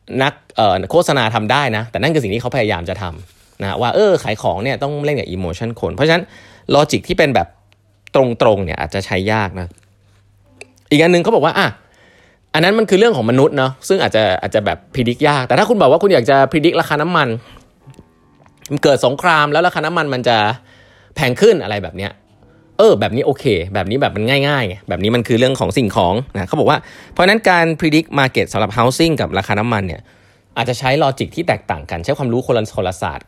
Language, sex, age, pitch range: Thai, male, 20-39, 100-140 Hz